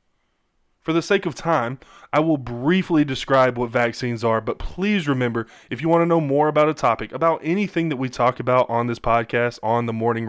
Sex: male